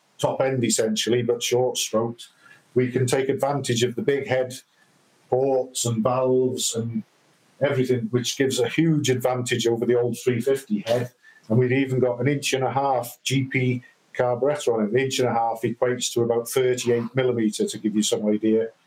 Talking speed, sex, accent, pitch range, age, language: 175 wpm, male, British, 120-140 Hz, 50-69, English